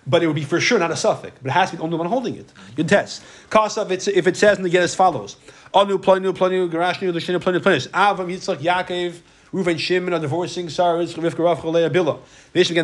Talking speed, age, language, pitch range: 165 wpm, 30-49, English, 155-190 Hz